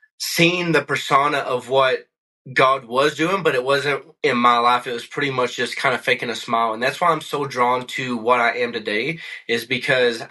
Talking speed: 215 wpm